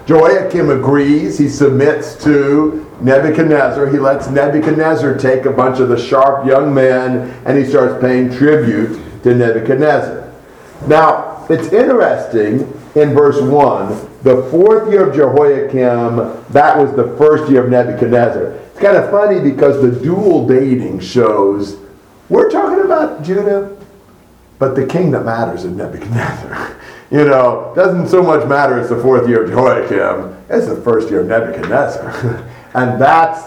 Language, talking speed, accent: English, 145 wpm, American